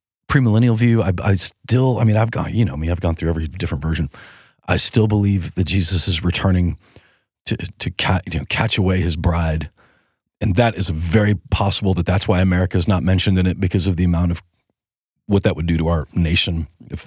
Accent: American